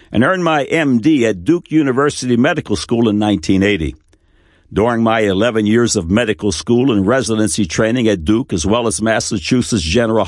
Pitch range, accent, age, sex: 100-130 Hz, American, 60-79, male